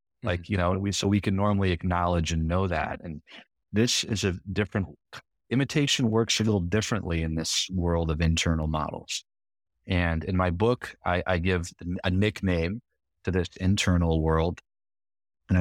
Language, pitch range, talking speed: English, 80-95 Hz, 160 wpm